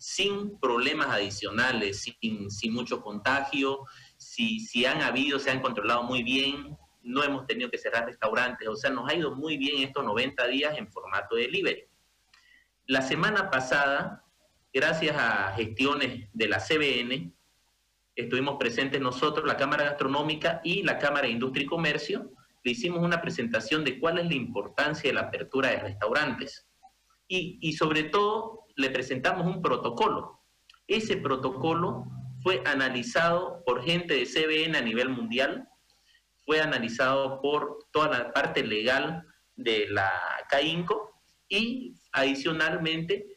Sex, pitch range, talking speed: male, 130-175 Hz, 145 wpm